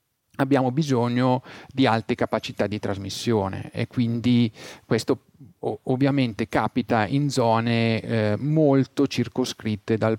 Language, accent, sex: Italian, native, male